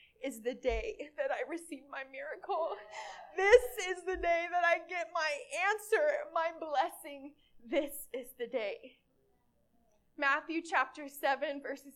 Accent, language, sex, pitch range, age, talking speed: American, English, female, 265-340 Hz, 20-39, 135 wpm